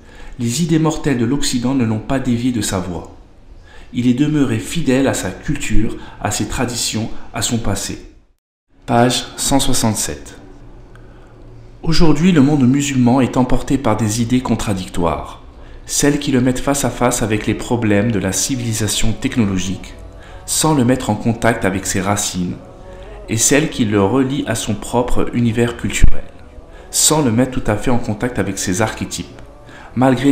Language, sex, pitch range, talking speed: French, male, 95-130 Hz, 160 wpm